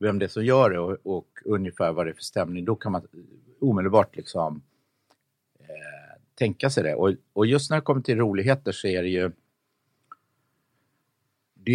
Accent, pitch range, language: Swedish, 85-130 Hz, English